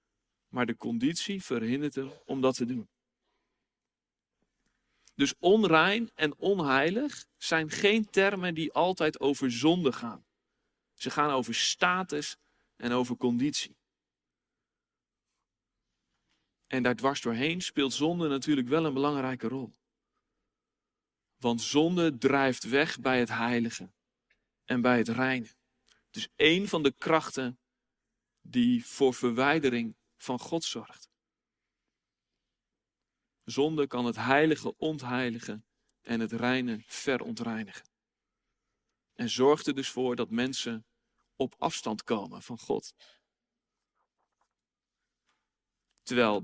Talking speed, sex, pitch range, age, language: 110 wpm, male, 125-160 Hz, 40-59, Dutch